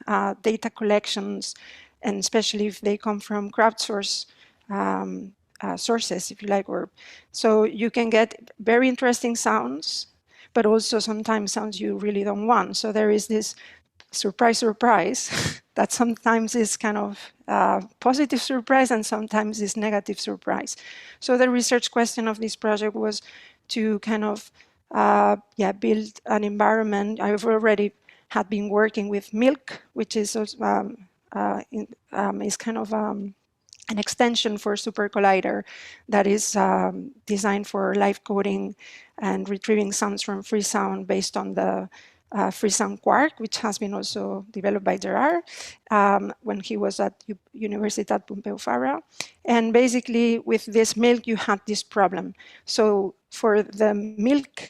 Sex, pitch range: female, 205-230 Hz